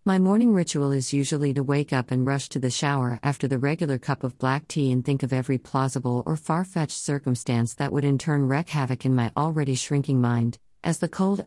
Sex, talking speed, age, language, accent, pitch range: female, 225 wpm, 50-69, English, American, 130-160 Hz